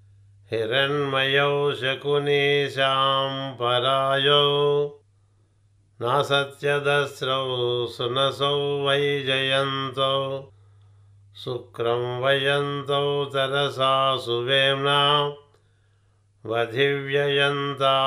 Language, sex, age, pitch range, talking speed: Telugu, male, 50-69, 120-145 Hz, 35 wpm